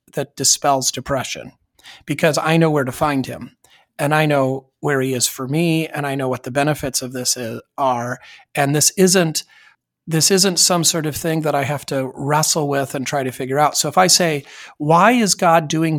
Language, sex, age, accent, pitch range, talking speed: English, male, 40-59, American, 135-170 Hz, 210 wpm